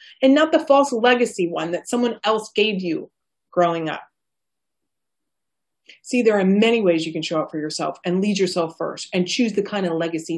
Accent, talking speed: American, 195 wpm